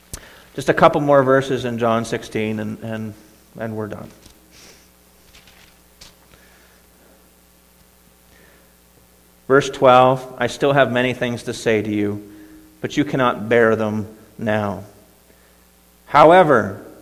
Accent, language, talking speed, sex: American, English, 110 wpm, male